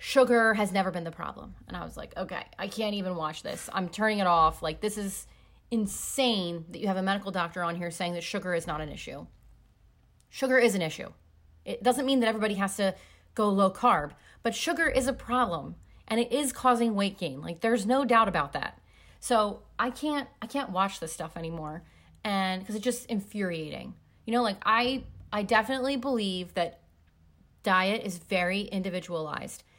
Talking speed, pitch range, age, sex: 195 wpm, 175-230 Hz, 30-49, female